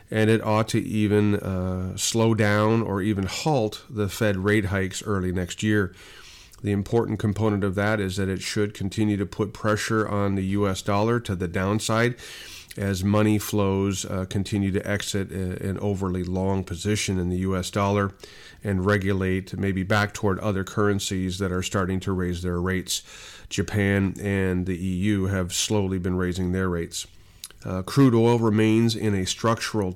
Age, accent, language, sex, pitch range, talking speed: 40-59, American, English, male, 95-110 Hz, 170 wpm